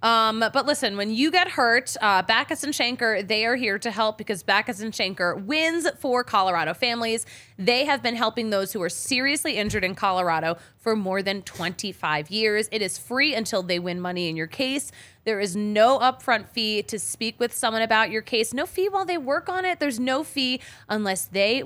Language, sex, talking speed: English, female, 205 wpm